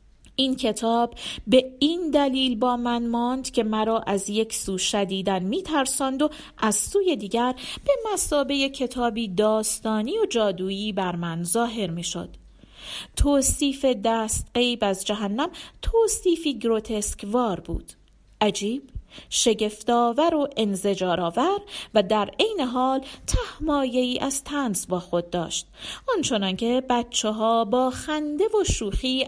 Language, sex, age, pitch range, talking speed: Persian, female, 40-59, 200-260 Hz, 120 wpm